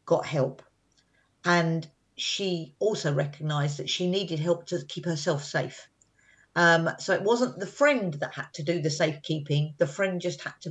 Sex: female